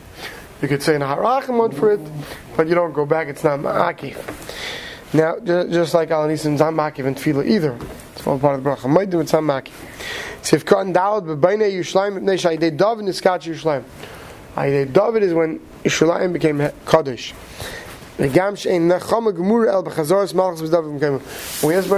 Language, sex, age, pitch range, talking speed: English, male, 30-49, 150-180 Hz, 110 wpm